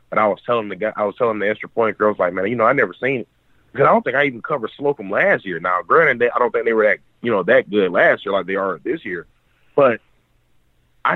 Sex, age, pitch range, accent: male, 30-49, 95-120 Hz, American